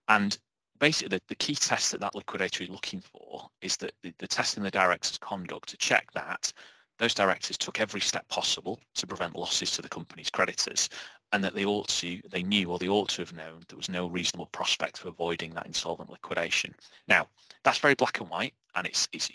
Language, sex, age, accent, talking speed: English, male, 30-49, British, 215 wpm